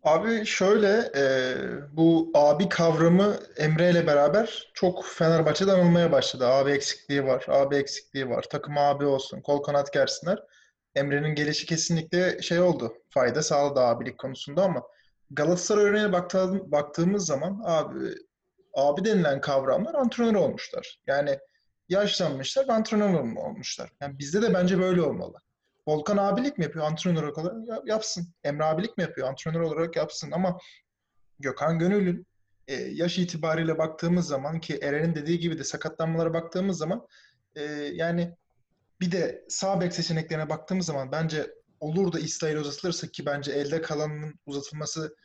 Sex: male